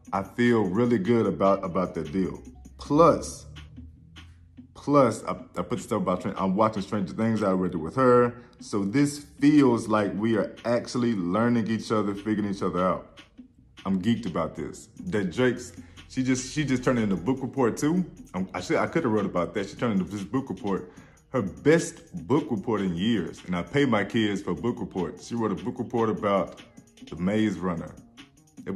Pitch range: 95-125 Hz